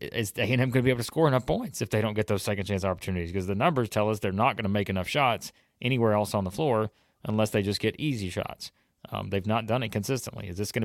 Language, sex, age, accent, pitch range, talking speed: English, male, 30-49, American, 100-125 Hz, 270 wpm